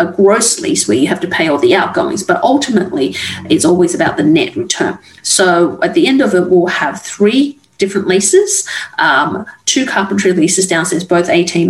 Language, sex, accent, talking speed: English, female, Australian, 190 wpm